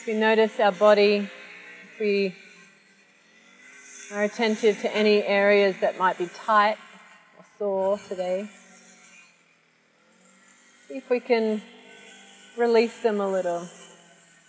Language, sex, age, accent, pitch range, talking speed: English, female, 30-49, Australian, 185-220 Hz, 110 wpm